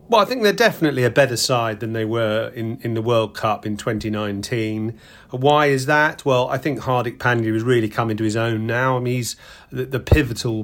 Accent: British